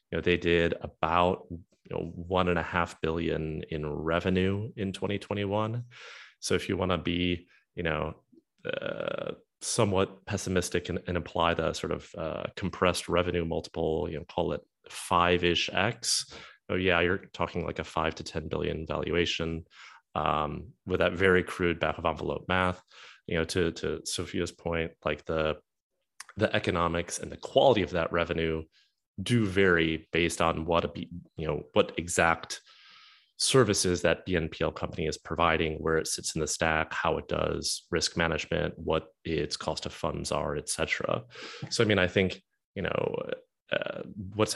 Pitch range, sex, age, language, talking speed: 80-95 Hz, male, 30-49, English, 165 wpm